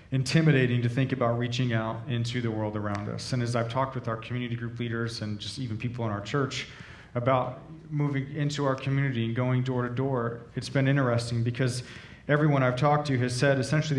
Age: 40-59